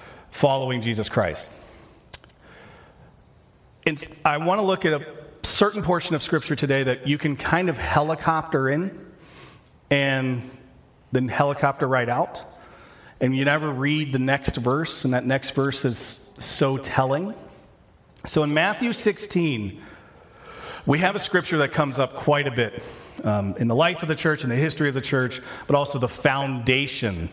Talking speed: 160 wpm